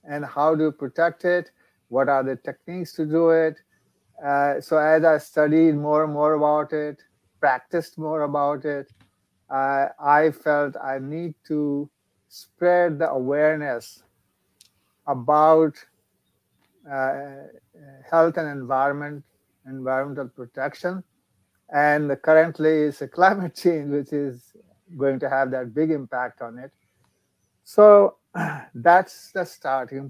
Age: 50-69